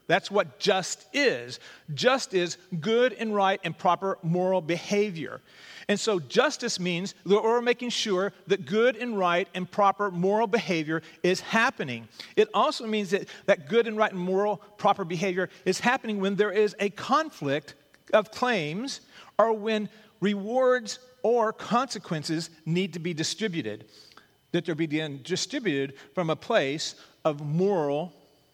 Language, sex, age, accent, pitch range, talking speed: English, male, 40-59, American, 160-215 Hz, 145 wpm